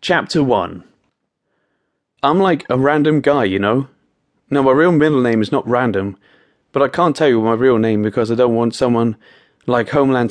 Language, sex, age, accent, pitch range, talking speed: English, male, 30-49, British, 110-140 Hz, 185 wpm